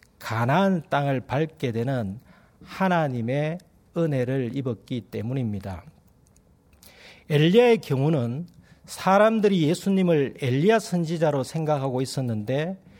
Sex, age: male, 40-59